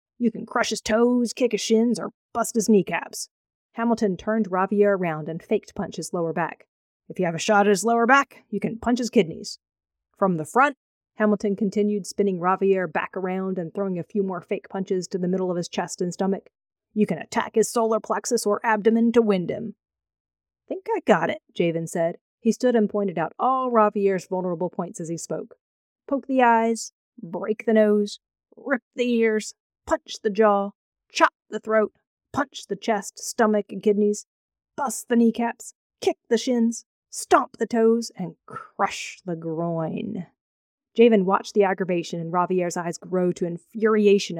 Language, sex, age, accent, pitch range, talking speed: English, female, 40-59, American, 180-225 Hz, 180 wpm